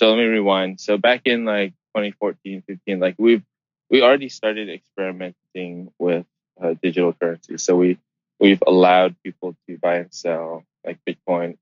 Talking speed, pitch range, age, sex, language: 160 wpm, 90-105 Hz, 20-39, male, English